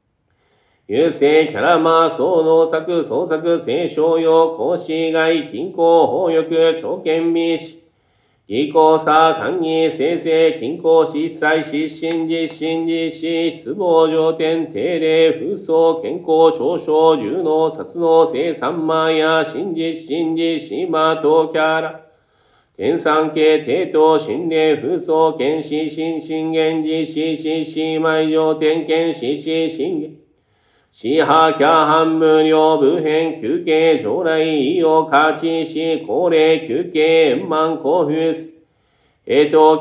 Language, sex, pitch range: Japanese, male, 155-160 Hz